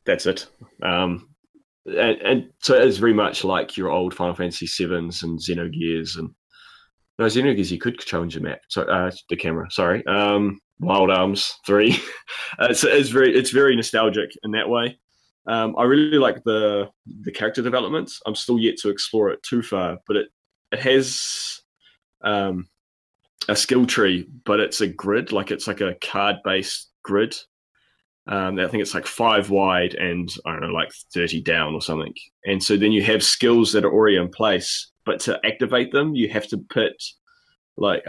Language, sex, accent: English, male, Australian